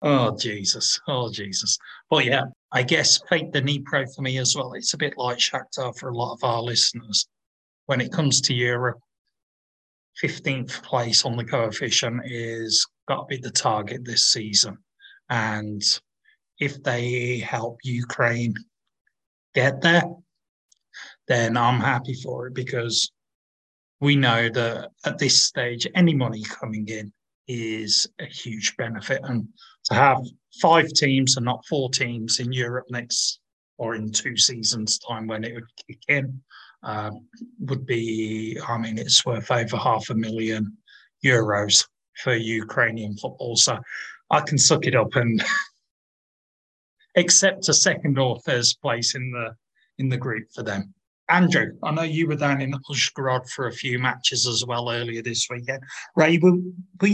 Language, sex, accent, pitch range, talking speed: English, male, British, 115-140 Hz, 155 wpm